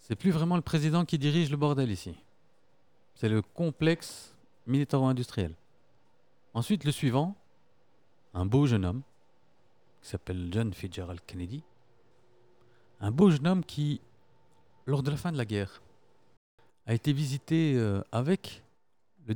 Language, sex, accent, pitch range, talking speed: French, male, French, 100-145 Hz, 135 wpm